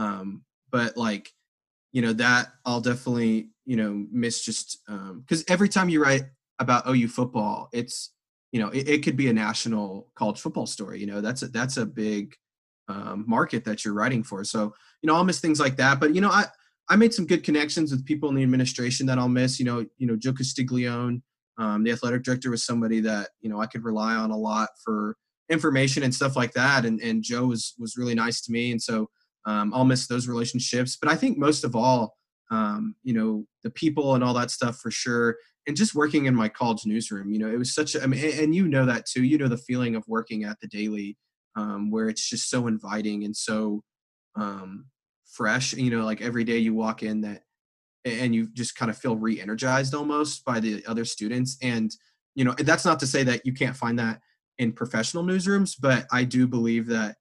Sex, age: male, 20-39